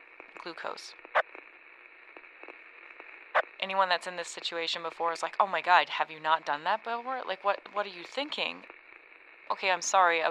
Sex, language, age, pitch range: female, English, 20-39, 165-235 Hz